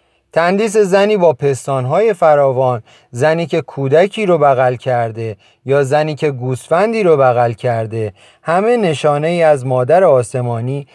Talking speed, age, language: 130 wpm, 30-49, Persian